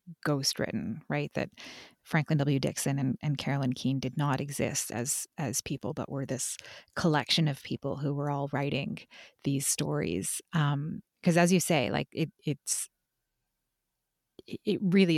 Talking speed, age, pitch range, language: 150 wpm, 30-49, 145-180 Hz, English